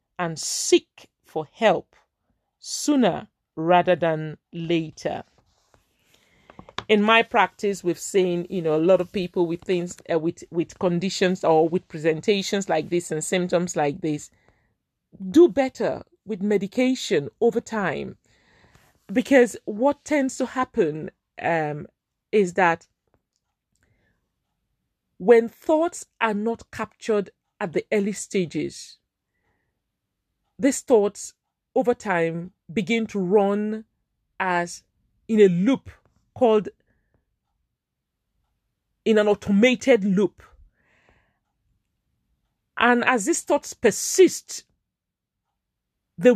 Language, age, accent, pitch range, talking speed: English, 40-59, Nigerian, 175-250 Hz, 100 wpm